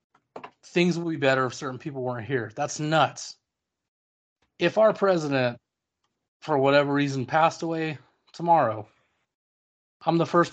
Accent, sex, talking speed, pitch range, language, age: American, male, 130 wpm, 120-150 Hz, English, 30-49